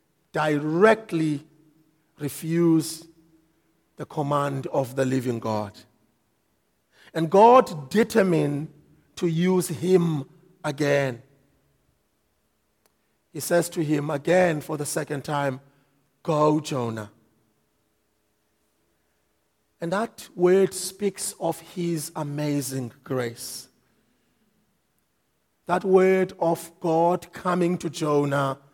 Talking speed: 85 wpm